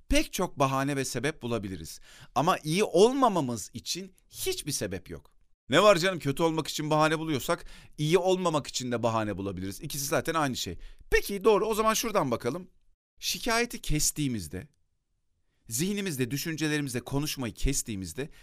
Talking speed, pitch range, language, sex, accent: 140 wpm, 105-175 Hz, Turkish, male, native